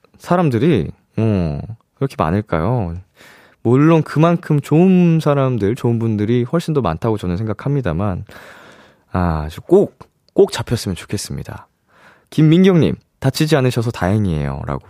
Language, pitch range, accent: Korean, 100-145 Hz, native